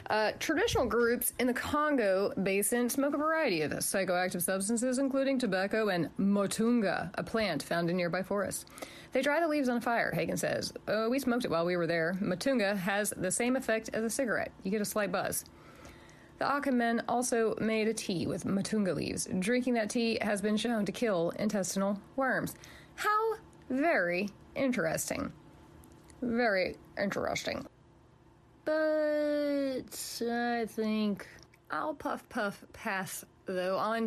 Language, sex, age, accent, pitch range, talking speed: English, female, 30-49, American, 205-255 Hz, 150 wpm